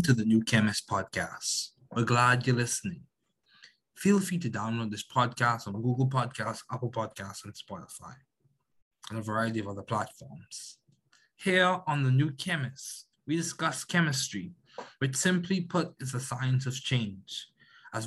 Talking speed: 150 wpm